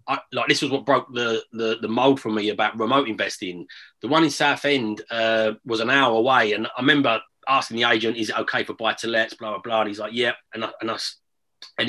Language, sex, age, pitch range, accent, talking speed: English, male, 30-49, 110-140 Hz, British, 245 wpm